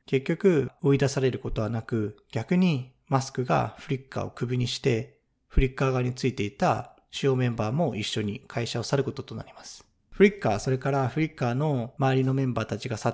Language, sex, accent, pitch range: Japanese, male, native, 115-140 Hz